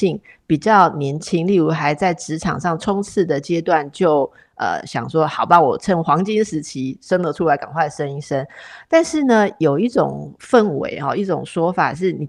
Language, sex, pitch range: Chinese, female, 160-225 Hz